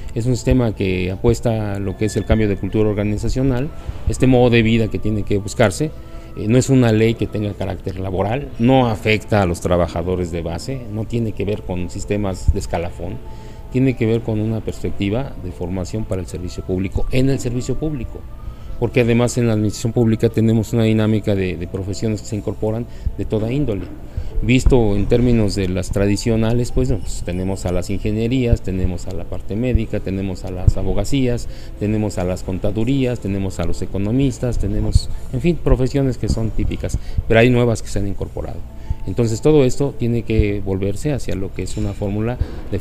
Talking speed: 190 wpm